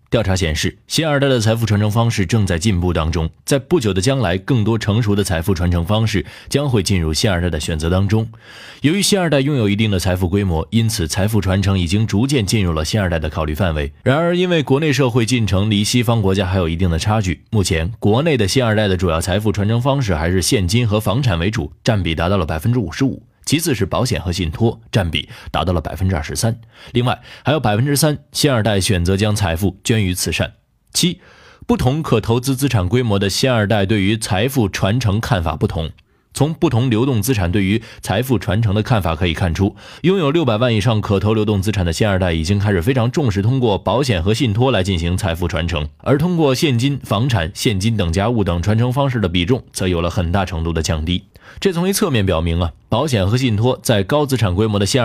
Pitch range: 95-125 Hz